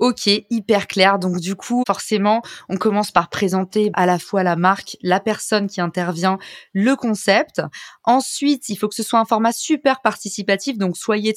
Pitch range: 185-225 Hz